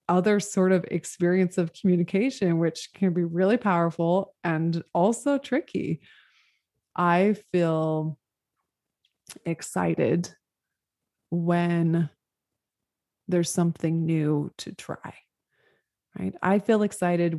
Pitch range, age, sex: 165-200 Hz, 20-39, female